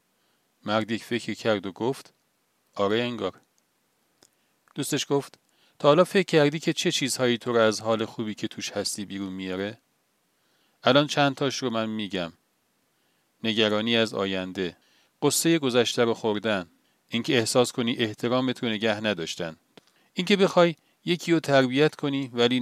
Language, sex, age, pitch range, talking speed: Persian, male, 40-59, 100-130 Hz, 140 wpm